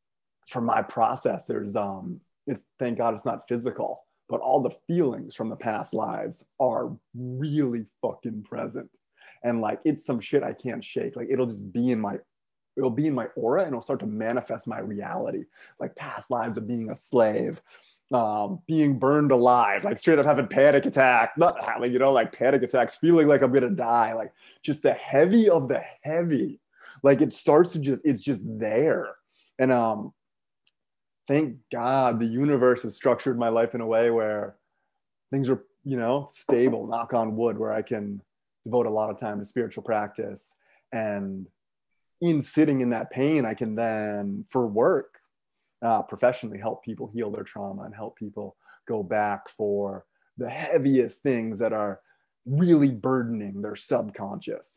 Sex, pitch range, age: male, 110-135 Hz, 20-39